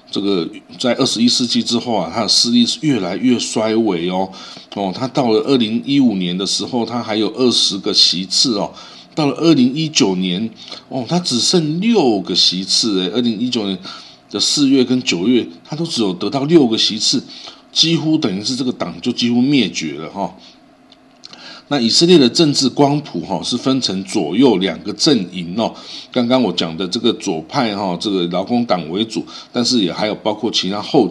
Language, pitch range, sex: Chinese, 100-145 Hz, male